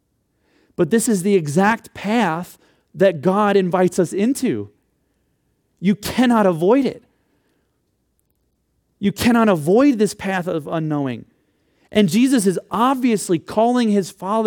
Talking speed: 115 wpm